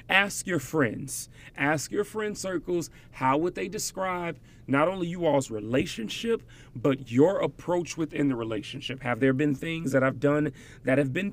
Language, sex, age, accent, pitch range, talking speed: English, male, 30-49, American, 130-175 Hz, 170 wpm